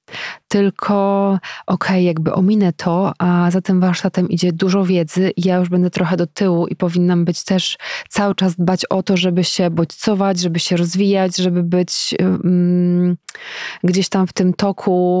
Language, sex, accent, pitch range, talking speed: Polish, female, native, 175-190 Hz, 170 wpm